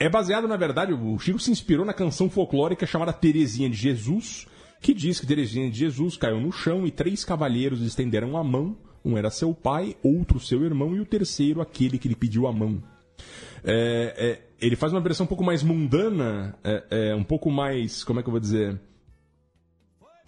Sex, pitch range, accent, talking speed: male, 120-185 Hz, Brazilian, 190 wpm